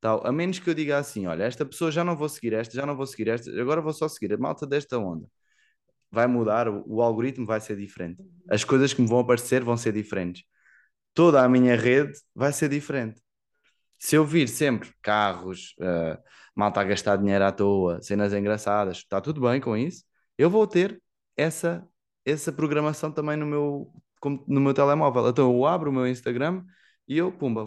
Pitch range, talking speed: 105-140 Hz, 195 wpm